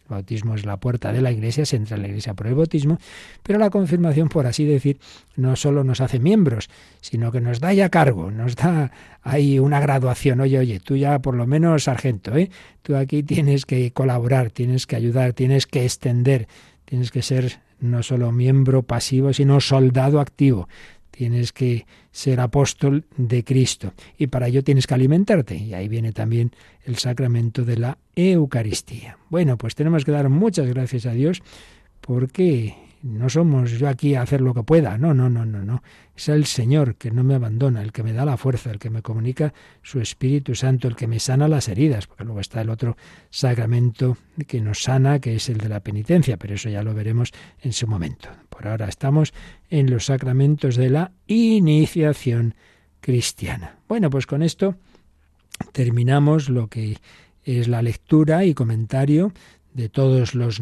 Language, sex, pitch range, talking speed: Spanish, male, 115-145 Hz, 185 wpm